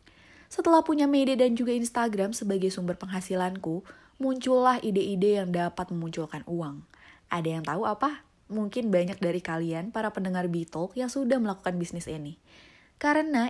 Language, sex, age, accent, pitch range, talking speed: Indonesian, female, 20-39, native, 165-220 Hz, 140 wpm